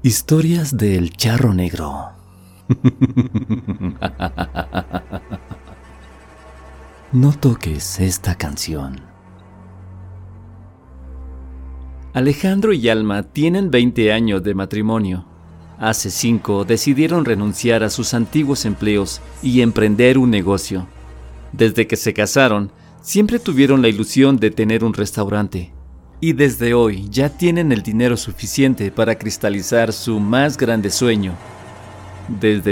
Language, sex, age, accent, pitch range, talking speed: Spanish, male, 40-59, Mexican, 95-120 Hz, 100 wpm